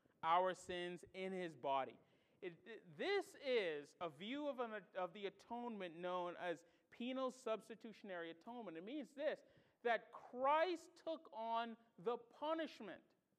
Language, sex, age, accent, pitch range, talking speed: English, male, 40-59, American, 170-265 Hz, 120 wpm